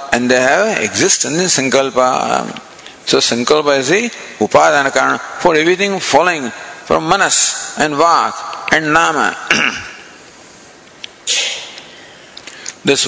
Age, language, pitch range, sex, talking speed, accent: 50-69, English, 135-190 Hz, male, 100 wpm, Indian